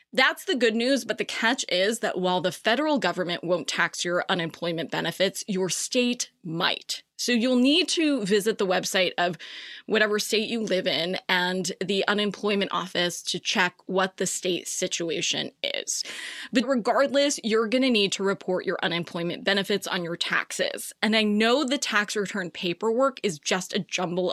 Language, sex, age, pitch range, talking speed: English, female, 20-39, 185-240 Hz, 175 wpm